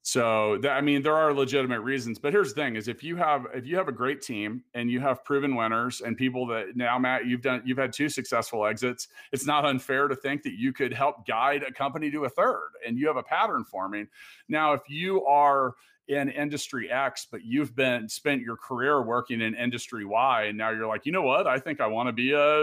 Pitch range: 120-150 Hz